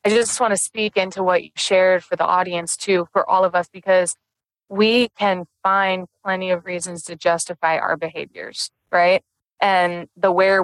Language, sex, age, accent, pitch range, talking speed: English, female, 20-39, American, 175-200 Hz, 180 wpm